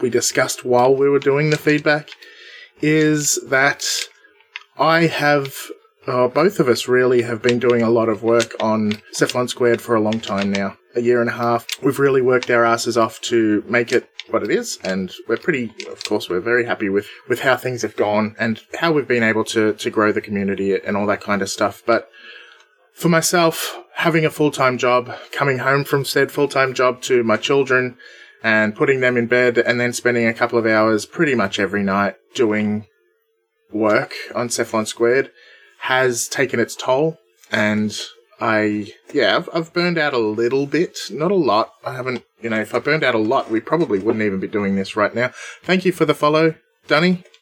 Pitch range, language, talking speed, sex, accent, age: 110-150 Hz, English, 200 wpm, male, Australian, 20-39